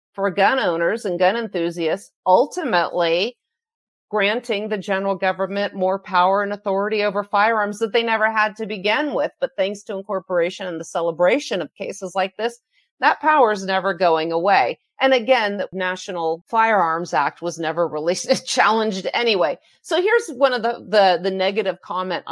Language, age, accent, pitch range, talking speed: English, 40-59, American, 175-235 Hz, 165 wpm